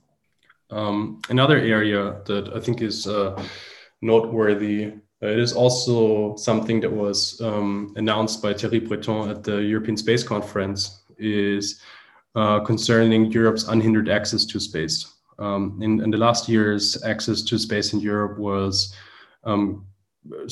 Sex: male